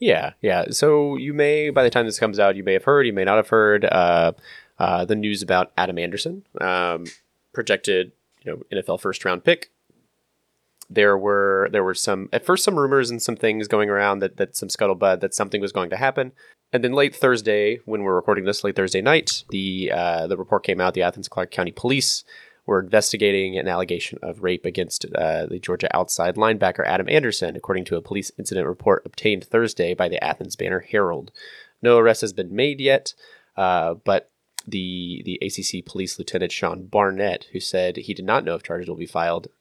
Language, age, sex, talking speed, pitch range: English, 20-39, male, 205 wpm, 90-120 Hz